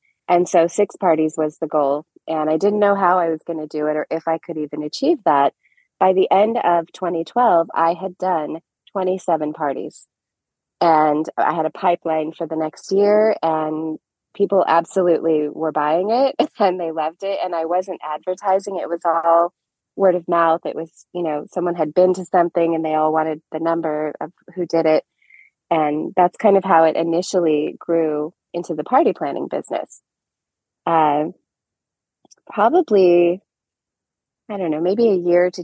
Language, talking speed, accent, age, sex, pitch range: English, 175 wpm, American, 20-39, female, 155-185 Hz